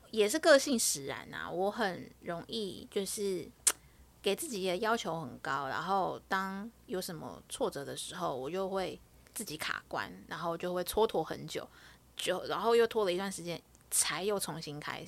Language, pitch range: Chinese, 180-235 Hz